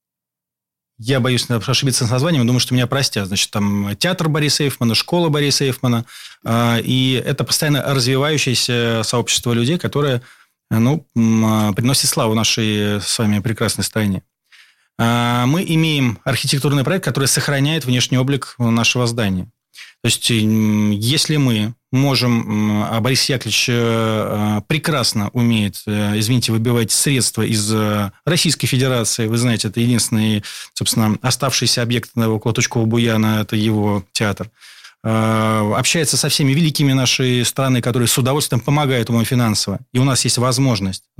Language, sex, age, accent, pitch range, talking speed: Russian, male, 20-39, native, 110-130 Hz, 130 wpm